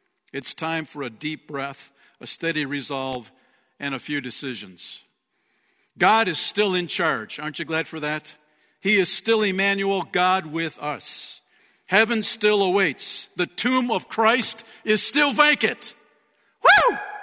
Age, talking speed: 60-79, 145 wpm